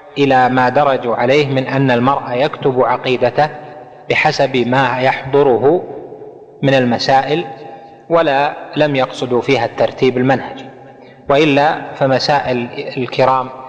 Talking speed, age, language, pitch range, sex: 100 wpm, 30-49, Arabic, 125-145 Hz, male